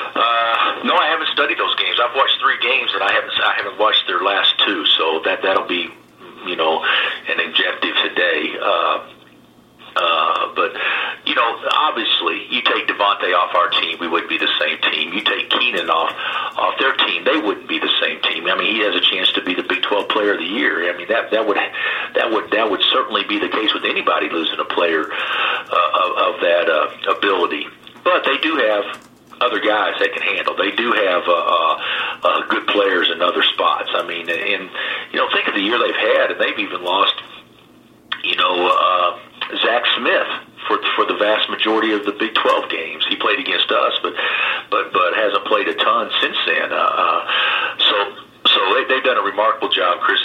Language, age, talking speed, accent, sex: English, 50-69, 205 wpm, American, male